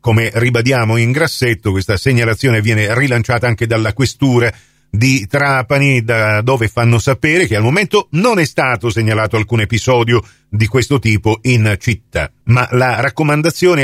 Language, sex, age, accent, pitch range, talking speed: Italian, male, 50-69, native, 115-150 Hz, 150 wpm